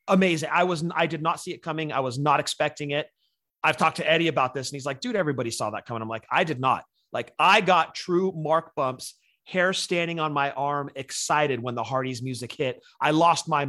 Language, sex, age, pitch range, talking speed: English, male, 30-49, 130-165 Hz, 230 wpm